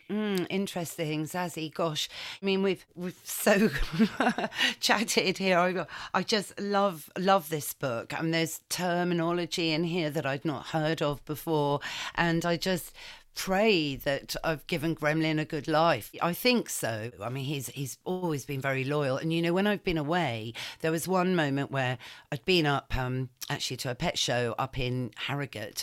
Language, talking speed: English, 180 wpm